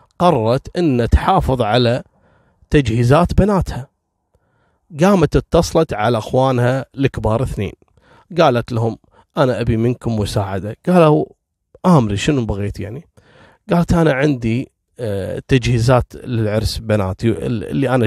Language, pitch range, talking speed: Arabic, 110-150 Hz, 105 wpm